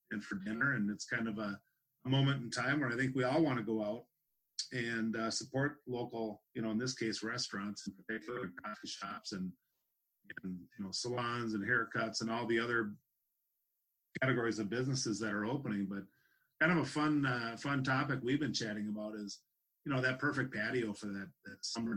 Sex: male